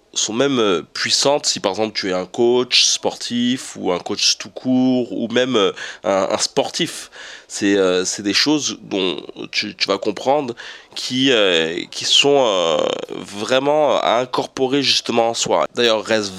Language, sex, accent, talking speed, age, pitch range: French, male, French, 160 wpm, 20-39, 100-125 Hz